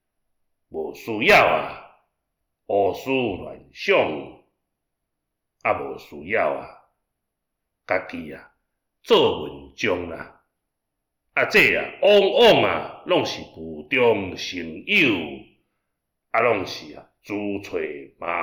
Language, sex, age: Chinese, male, 60-79